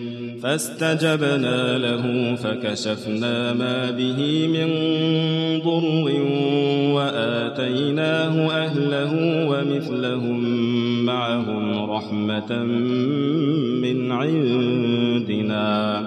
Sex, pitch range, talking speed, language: male, 120-155 Hz, 50 wpm, Arabic